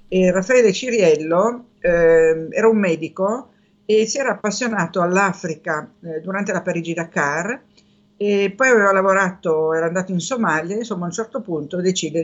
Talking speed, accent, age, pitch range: 135 wpm, native, 50-69, 155-190 Hz